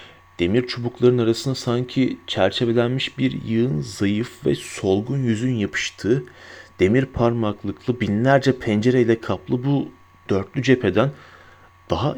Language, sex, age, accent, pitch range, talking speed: Turkish, male, 40-59, native, 100-140 Hz, 105 wpm